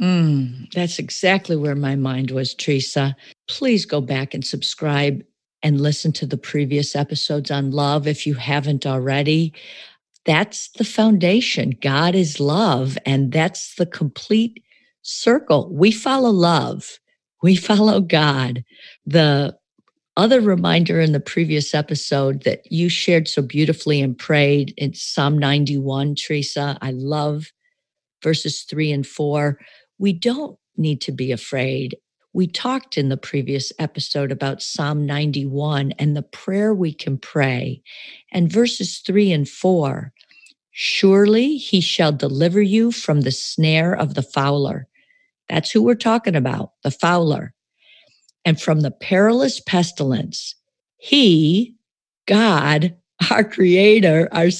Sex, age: female, 50-69